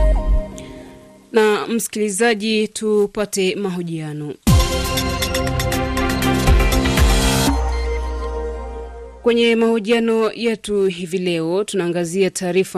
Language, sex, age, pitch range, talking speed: Swahili, female, 30-49, 170-220 Hz, 50 wpm